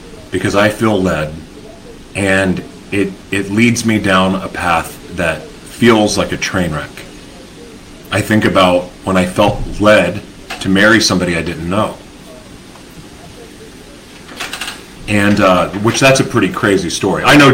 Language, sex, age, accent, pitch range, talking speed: English, male, 40-59, American, 90-110 Hz, 140 wpm